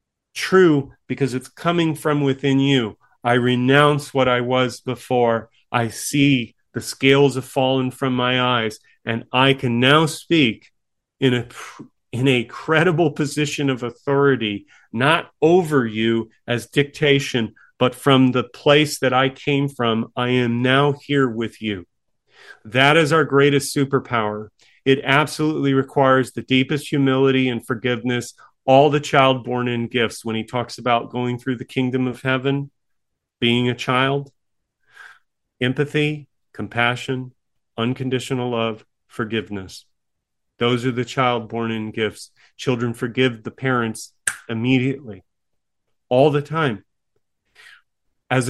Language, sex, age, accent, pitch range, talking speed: English, male, 40-59, American, 120-140 Hz, 130 wpm